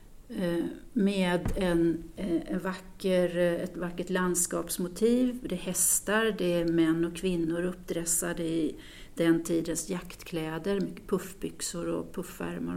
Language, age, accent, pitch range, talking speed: Swedish, 40-59, native, 170-195 Hz, 115 wpm